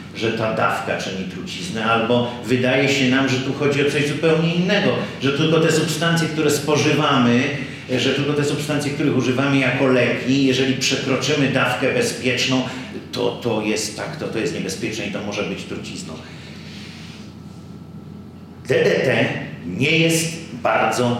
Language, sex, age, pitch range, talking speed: Polish, male, 50-69, 115-160 Hz, 145 wpm